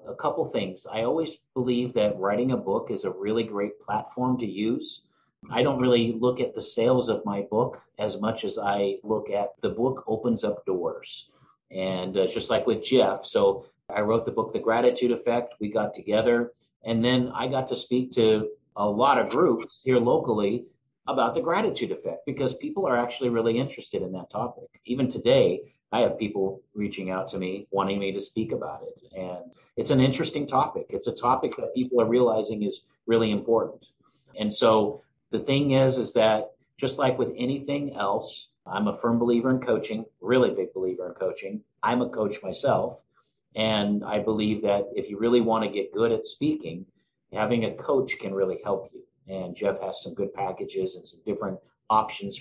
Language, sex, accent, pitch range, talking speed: English, male, American, 105-140 Hz, 190 wpm